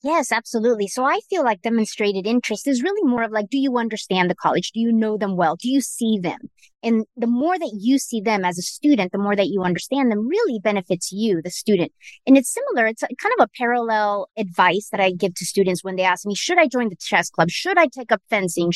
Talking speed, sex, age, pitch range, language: 245 wpm, female, 30-49, 205-285 Hz, English